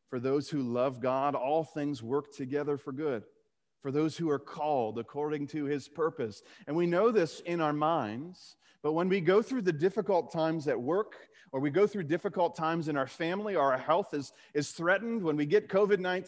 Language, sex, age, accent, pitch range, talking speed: English, male, 40-59, American, 135-175 Hz, 205 wpm